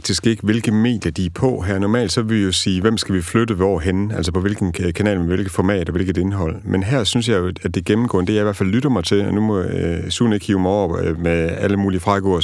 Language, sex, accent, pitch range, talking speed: Danish, male, native, 90-115 Hz, 260 wpm